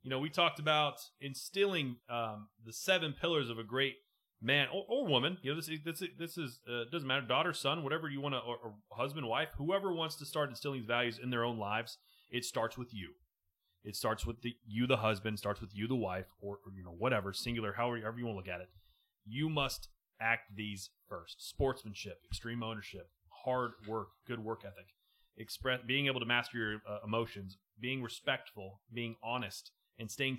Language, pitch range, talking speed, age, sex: English, 110-140 Hz, 200 wpm, 30-49, male